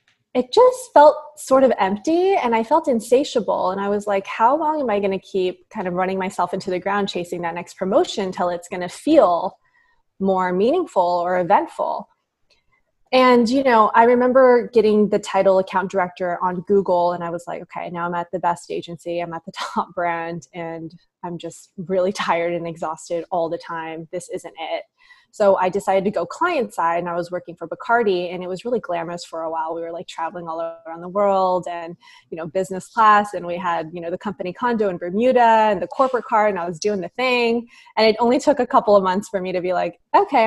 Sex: female